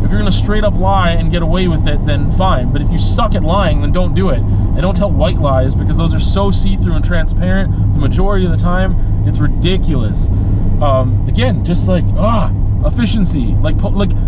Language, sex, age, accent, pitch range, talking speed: English, male, 30-49, American, 95-145 Hz, 210 wpm